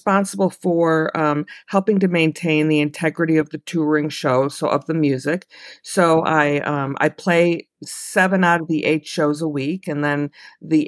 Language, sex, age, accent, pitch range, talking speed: English, female, 50-69, American, 140-165 Hz, 175 wpm